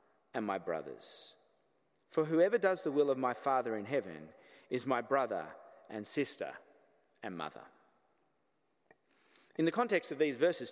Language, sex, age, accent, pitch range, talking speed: English, male, 30-49, Australian, 120-200 Hz, 145 wpm